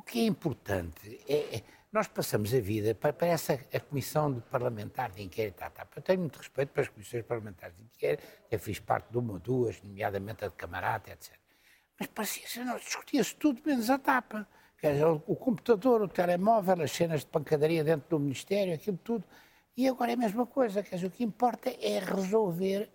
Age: 60-79